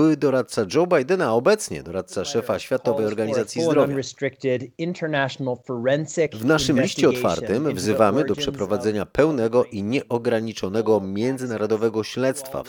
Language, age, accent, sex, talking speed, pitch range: Polish, 30-49, native, male, 115 wpm, 105-135 Hz